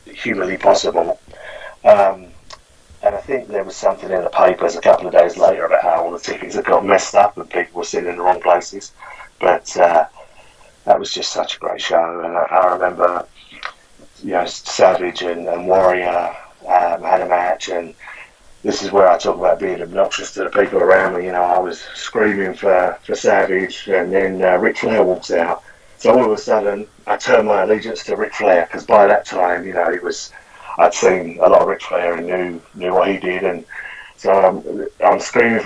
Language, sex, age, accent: English, male, 30-49, British